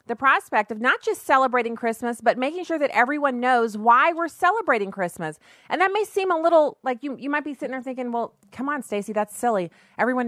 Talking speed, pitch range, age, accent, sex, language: 220 wpm, 195-240 Hz, 30-49, American, female, English